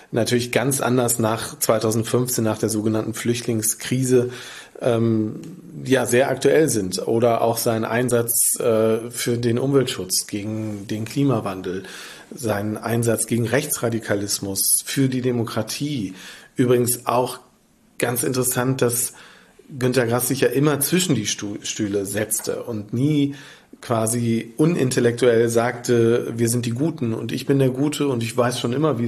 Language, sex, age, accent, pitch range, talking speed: German, male, 40-59, German, 110-135 Hz, 135 wpm